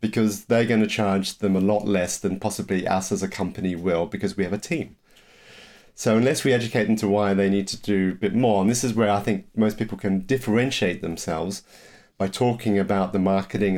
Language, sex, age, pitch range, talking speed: English, male, 40-59, 100-115 Hz, 220 wpm